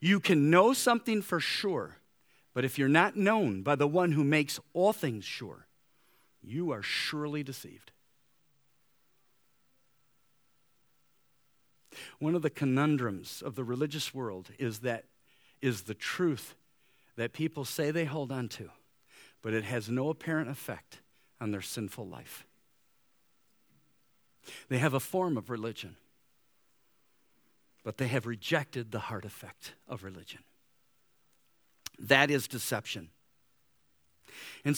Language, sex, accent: English, male, American